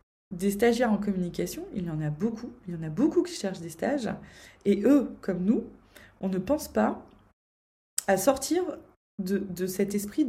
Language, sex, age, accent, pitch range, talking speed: French, female, 20-39, French, 175-220 Hz, 185 wpm